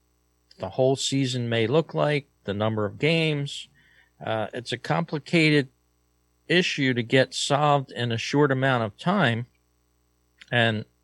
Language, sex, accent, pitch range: English, male, American, 105-140 Hz